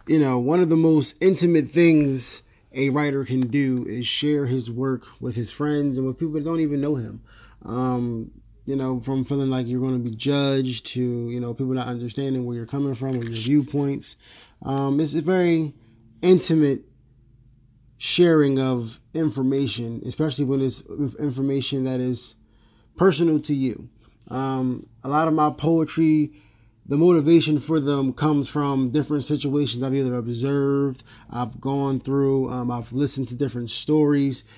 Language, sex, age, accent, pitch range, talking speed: English, male, 20-39, American, 125-145 Hz, 165 wpm